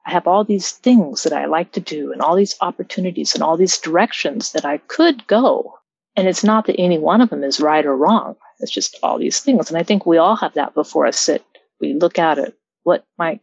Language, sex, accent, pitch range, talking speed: English, female, American, 155-210 Hz, 245 wpm